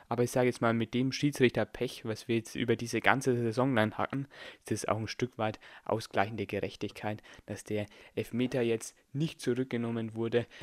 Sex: male